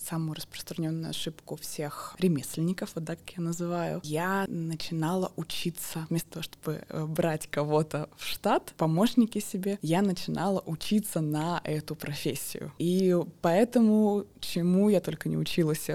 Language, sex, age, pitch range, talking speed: Russian, female, 20-39, 155-180 Hz, 130 wpm